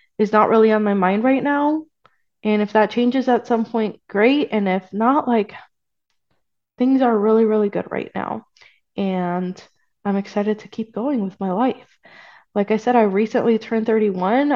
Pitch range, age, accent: 195-225 Hz, 20-39, American